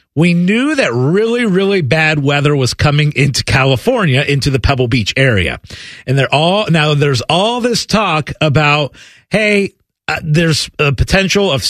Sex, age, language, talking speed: male, 40-59, English, 160 wpm